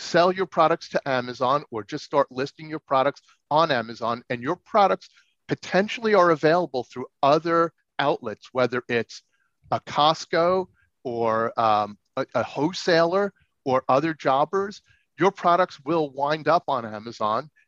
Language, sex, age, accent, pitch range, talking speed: English, male, 40-59, American, 120-155 Hz, 140 wpm